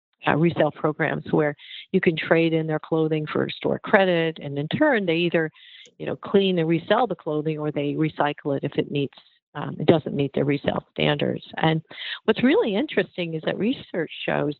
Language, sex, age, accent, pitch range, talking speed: English, female, 50-69, American, 155-180 Hz, 195 wpm